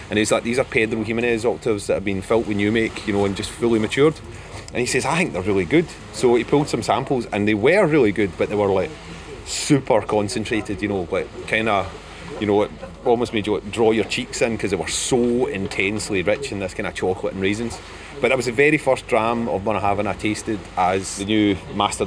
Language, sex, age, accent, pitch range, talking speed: English, male, 30-49, British, 100-120 Hz, 245 wpm